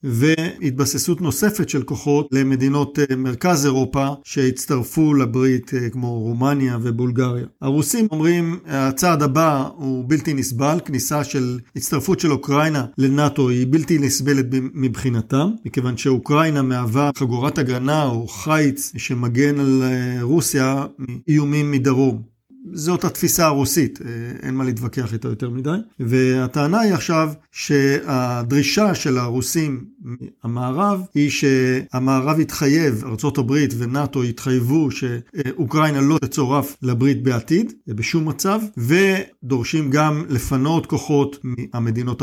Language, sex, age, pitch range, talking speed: Hebrew, male, 50-69, 130-155 Hz, 110 wpm